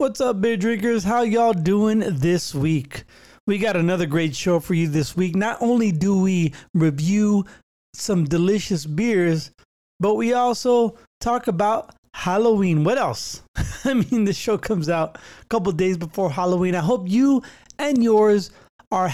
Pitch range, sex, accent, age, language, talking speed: 165-220 Hz, male, American, 30-49, English, 160 wpm